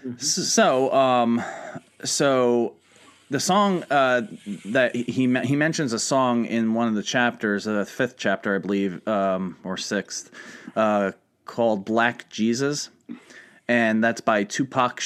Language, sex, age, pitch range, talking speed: English, male, 30-49, 110-125 Hz, 135 wpm